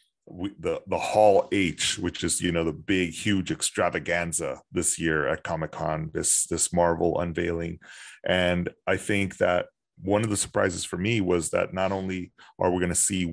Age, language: 30-49, English